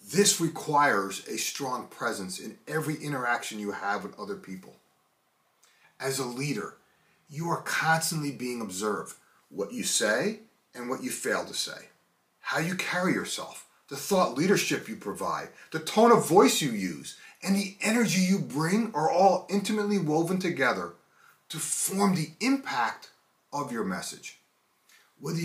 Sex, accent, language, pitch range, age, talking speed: male, American, English, 140-195 Hz, 30-49, 150 wpm